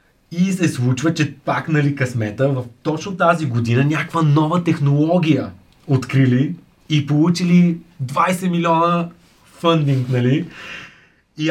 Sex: male